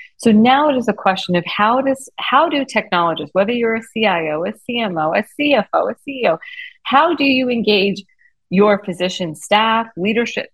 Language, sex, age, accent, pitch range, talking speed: English, female, 30-49, American, 180-265 Hz, 170 wpm